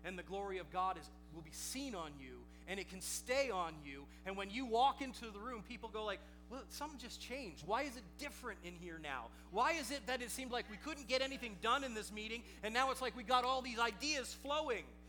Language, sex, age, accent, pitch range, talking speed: English, male, 30-49, American, 225-290 Hz, 250 wpm